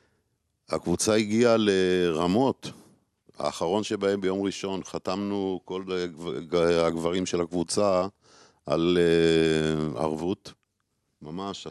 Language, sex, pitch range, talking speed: Hebrew, male, 85-100 Hz, 80 wpm